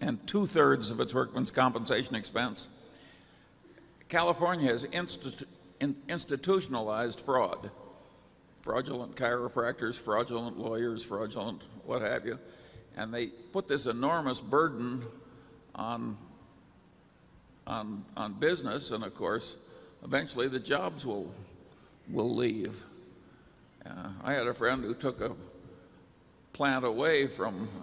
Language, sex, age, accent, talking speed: English, male, 60-79, American, 115 wpm